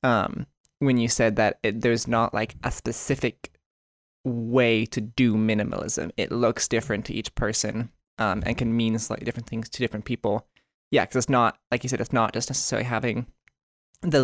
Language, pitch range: English, 115-135 Hz